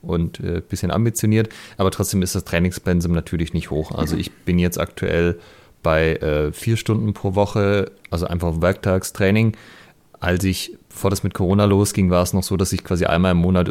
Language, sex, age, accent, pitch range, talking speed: German, male, 30-49, German, 85-100 Hz, 195 wpm